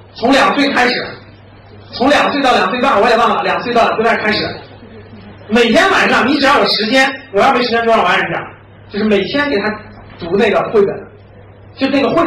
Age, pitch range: 30-49, 200-295 Hz